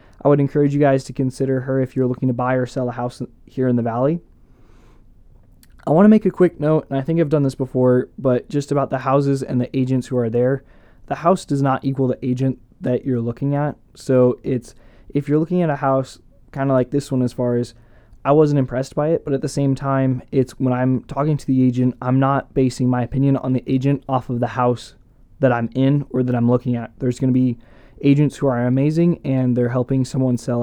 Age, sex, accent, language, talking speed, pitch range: 20-39, male, American, English, 240 wpm, 125-140 Hz